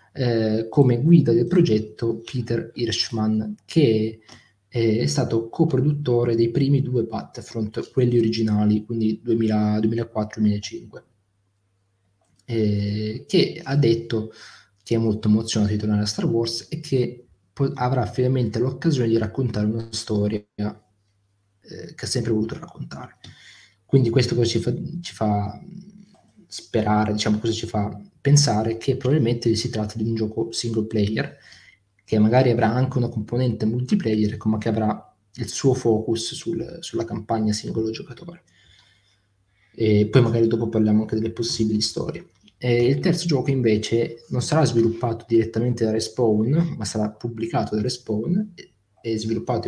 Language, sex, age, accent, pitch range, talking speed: Italian, male, 20-39, native, 105-125 Hz, 140 wpm